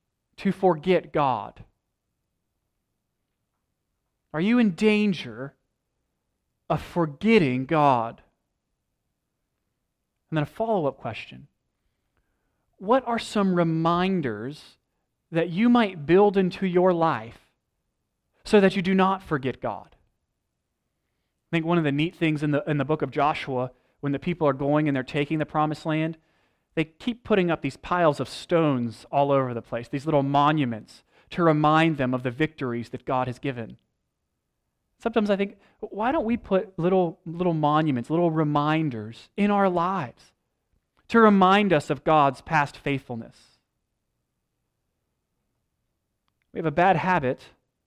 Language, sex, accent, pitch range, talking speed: English, male, American, 135-185 Hz, 135 wpm